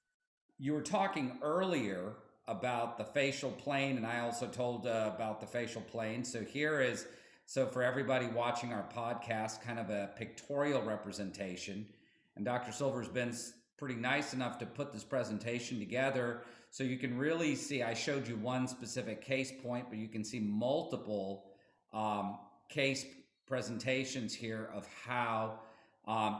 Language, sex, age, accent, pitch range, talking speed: English, male, 50-69, American, 110-135 Hz, 150 wpm